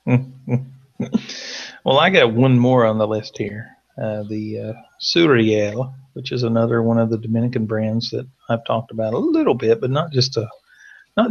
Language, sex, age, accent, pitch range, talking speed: English, male, 40-59, American, 110-125 Hz, 175 wpm